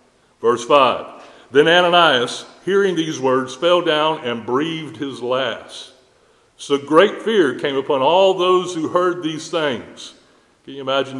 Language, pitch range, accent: English, 125-190 Hz, American